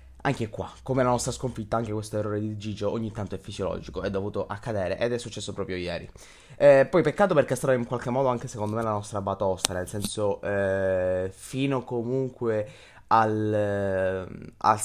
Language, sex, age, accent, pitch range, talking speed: Italian, male, 20-39, native, 105-120 Hz, 180 wpm